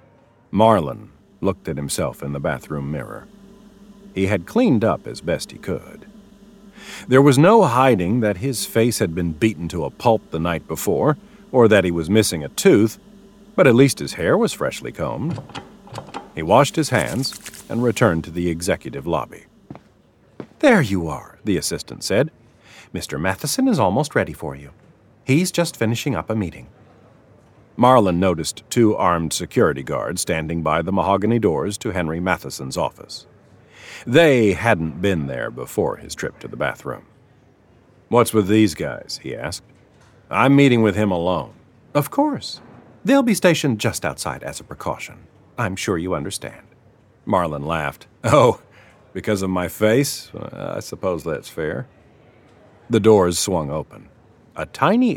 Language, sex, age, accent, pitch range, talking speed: English, male, 50-69, American, 90-140 Hz, 155 wpm